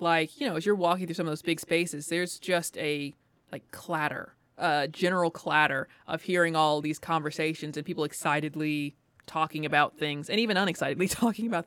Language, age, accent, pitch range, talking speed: English, 20-39, American, 150-185 Hz, 185 wpm